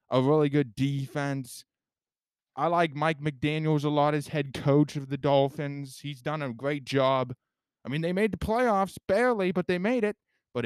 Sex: male